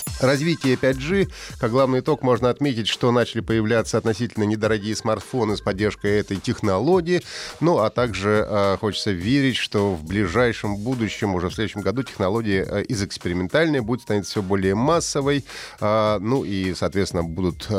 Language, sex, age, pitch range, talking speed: Russian, male, 30-49, 95-125 Hz, 150 wpm